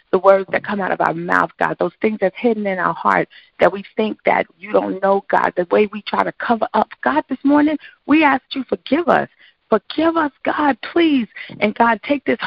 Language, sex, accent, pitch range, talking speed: English, female, American, 180-240 Hz, 235 wpm